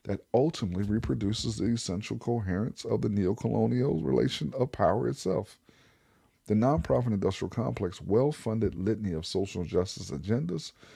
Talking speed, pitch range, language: 135 wpm, 90-115 Hz, English